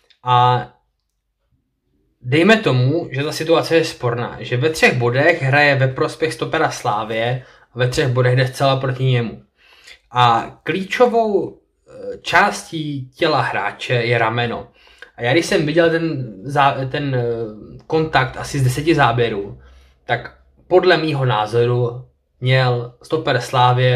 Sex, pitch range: male, 125-165 Hz